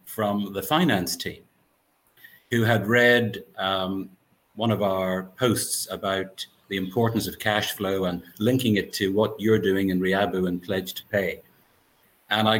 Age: 50-69